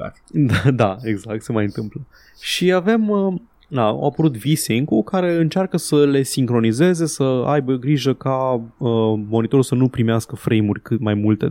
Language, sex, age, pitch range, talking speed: Romanian, male, 20-39, 110-145 Hz, 150 wpm